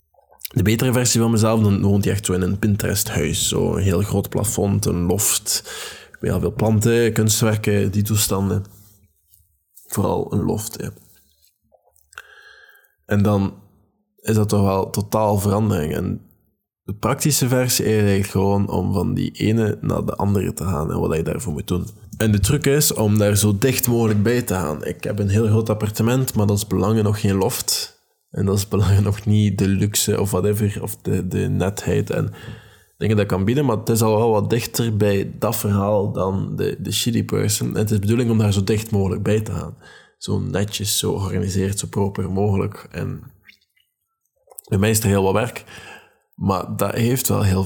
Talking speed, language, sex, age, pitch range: 190 wpm, Dutch, male, 20-39, 100-110 Hz